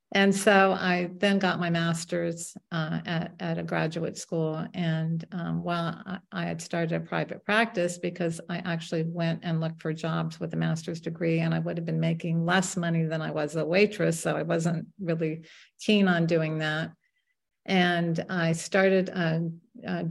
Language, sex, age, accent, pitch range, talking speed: English, female, 50-69, American, 160-175 Hz, 180 wpm